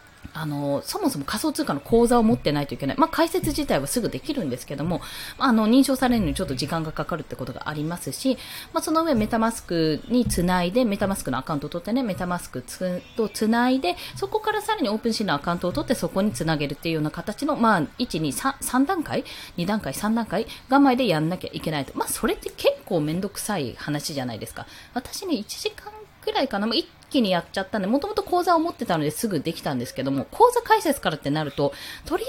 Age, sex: 20-39, female